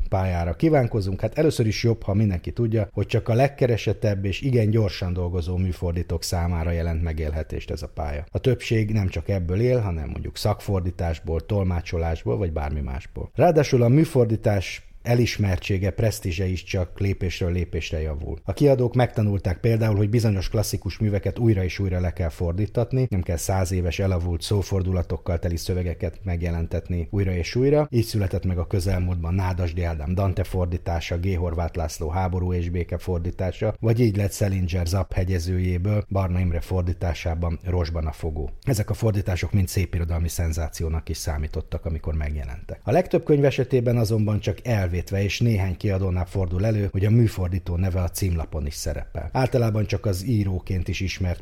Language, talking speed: Hungarian, 155 wpm